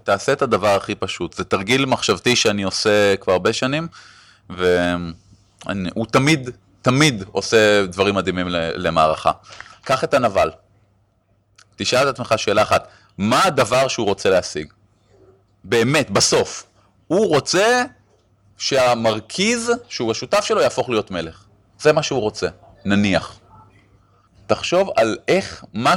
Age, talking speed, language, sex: 30-49, 120 wpm, Hebrew, male